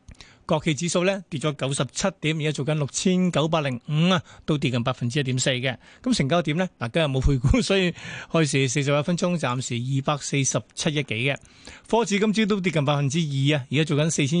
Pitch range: 140-180 Hz